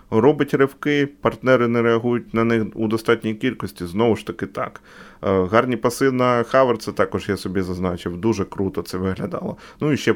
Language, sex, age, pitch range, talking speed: Ukrainian, male, 20-39, 95-120 Hz, 175 wpm